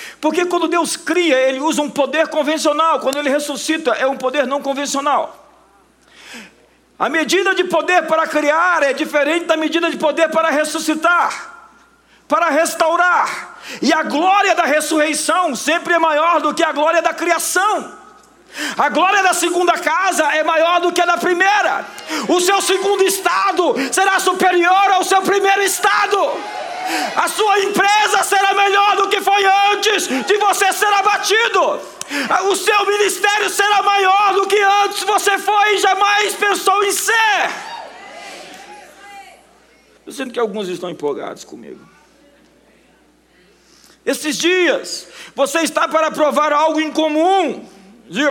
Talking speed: 140 wpm